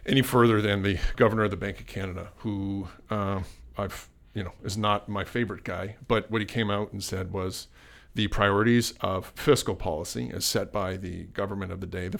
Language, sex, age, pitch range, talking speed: English, male, 40-59, 95-115 Hz, 205 wpm